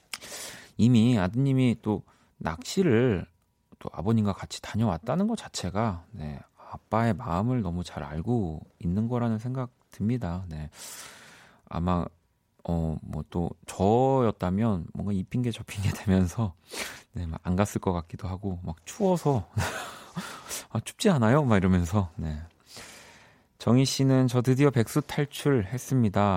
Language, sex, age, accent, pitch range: Korean, male, 30-49, native, 90-120 Hz